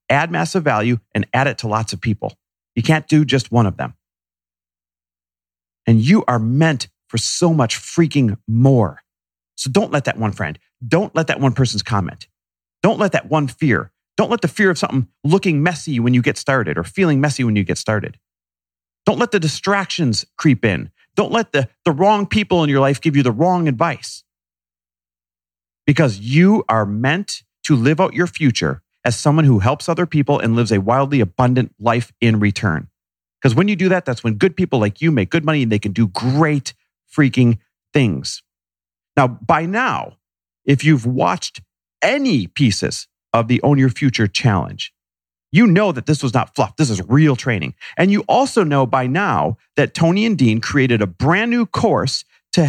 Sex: male